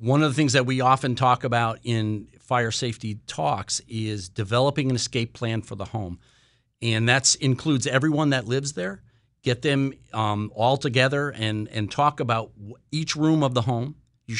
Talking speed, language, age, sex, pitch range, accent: 180 wpm, English, 50-69, male, 110-130 Hz, American